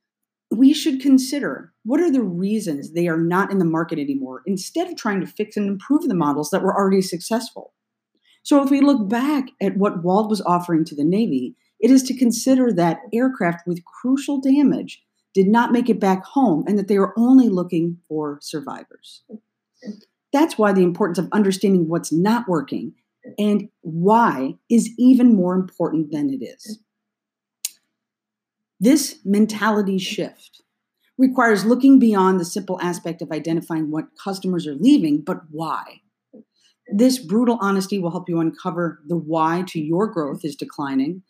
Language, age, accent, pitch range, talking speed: English, 40-59, American, 175-240 Hz, 165 wpm